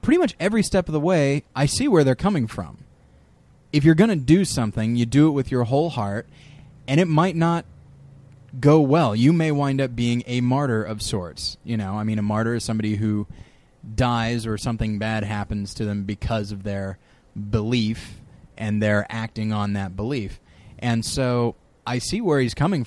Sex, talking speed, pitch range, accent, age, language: male, 195 wpm, 105-140 Hz, American, 20-39, English